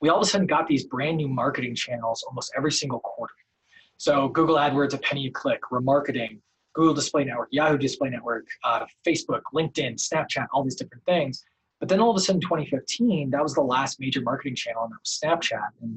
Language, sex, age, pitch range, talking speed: English, male, 20-39, 130-175 Hz, 210 wpm